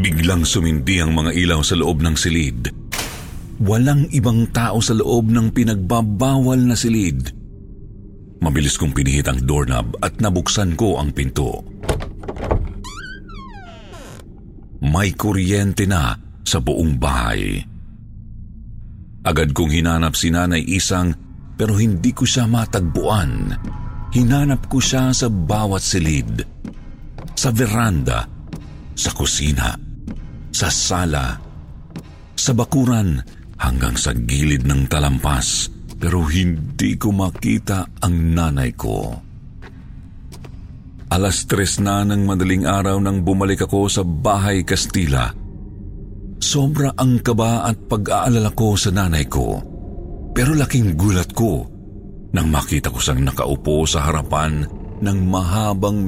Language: Filipino